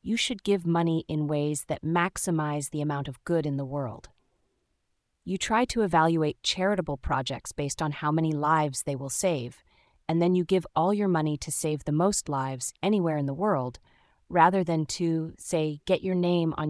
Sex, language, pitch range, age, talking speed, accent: female, English, 145-175 Hz, 30-49, 190 wpm, American